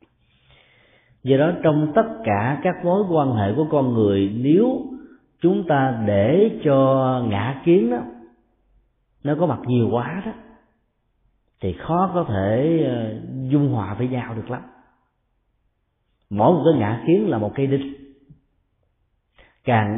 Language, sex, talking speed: Vietnamese, male, 140 wpm